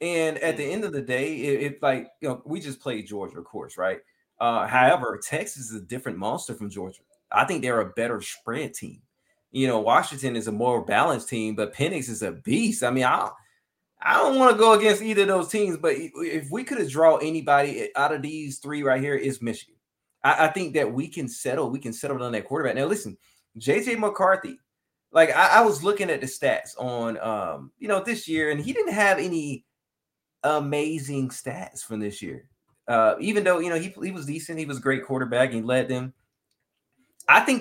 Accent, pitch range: American, 125-180 Hz